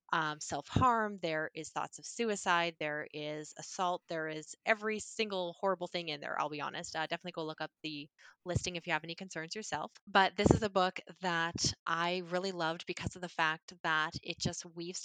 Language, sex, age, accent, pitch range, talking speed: English, female, 20-39, American, 165-210 Hz, 205 wpm